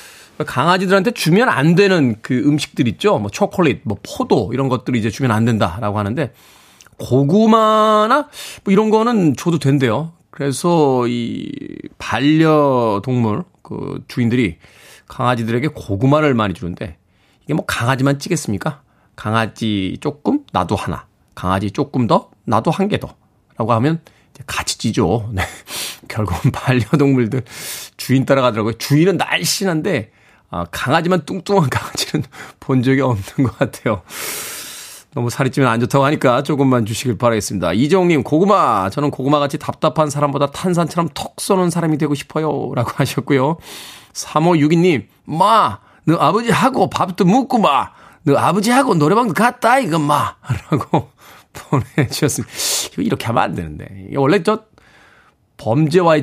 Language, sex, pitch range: Korean, male, 120-170 Hz